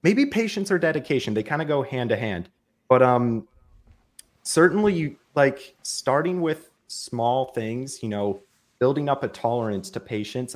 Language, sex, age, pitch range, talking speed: English, male, 30-49, 110-135 Hz, 160 wpm